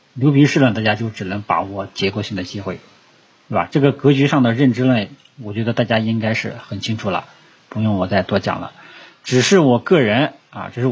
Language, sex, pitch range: Chinese, male, 105-135 Hz